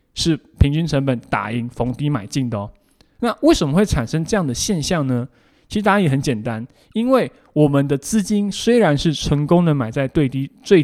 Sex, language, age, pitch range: male, Chinese, 20-39, 130-175 Hz